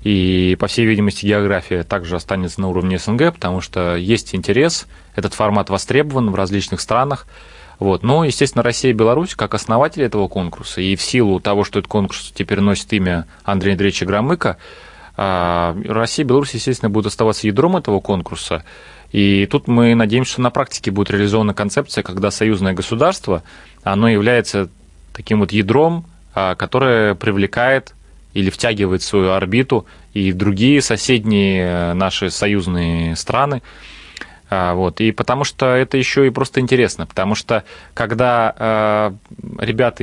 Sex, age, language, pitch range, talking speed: male, 20-39, Russian, 95-120 Hz, 140 wpm